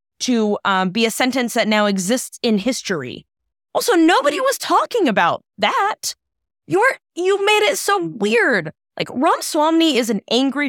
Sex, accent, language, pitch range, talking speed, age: female, American, English, 205-295 Hz, 155 wpm, 20-39